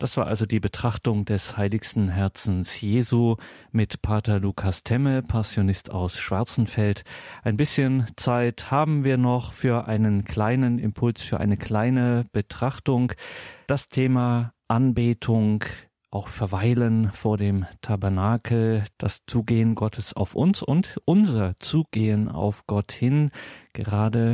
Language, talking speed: German, 125 wpm